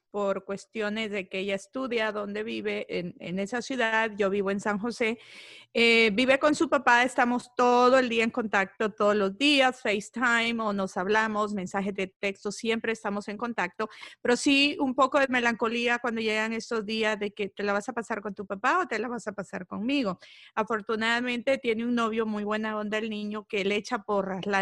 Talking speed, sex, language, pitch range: 200 wpm, female, Spanish, 200-235 Hz